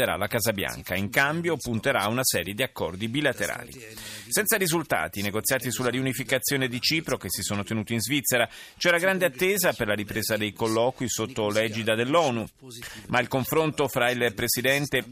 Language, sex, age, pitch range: Italian, male, 30-49, 115-165 Hz